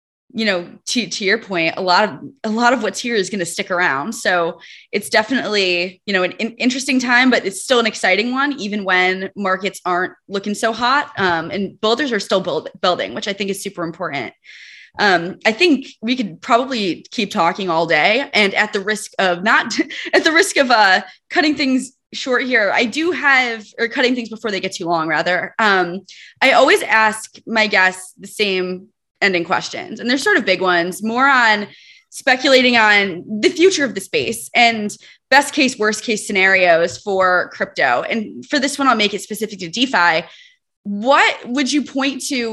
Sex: female